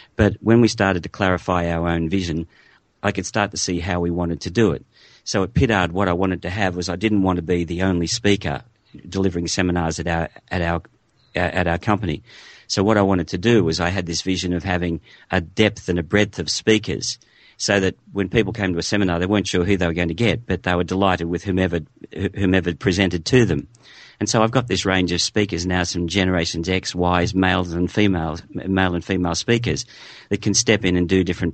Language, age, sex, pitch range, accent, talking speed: English, 50-69, male, 90-105 Hz, Australian, 230 wpm